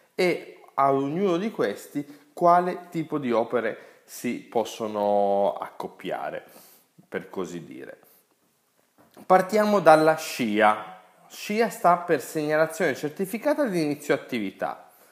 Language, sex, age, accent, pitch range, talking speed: Italian, male, 30-49, native, 110-175 Hz, 105 wpm